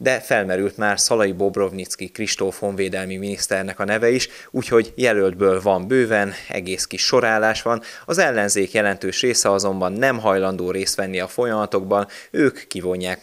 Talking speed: 145 wpm